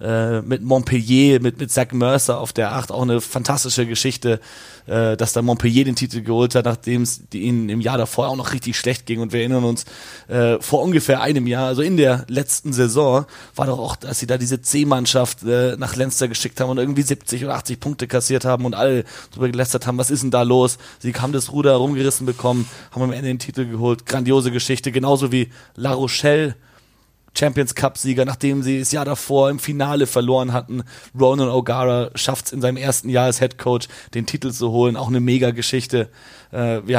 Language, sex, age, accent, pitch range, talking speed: German, male, 30-49, German, 120-130 Hz, 195 wpm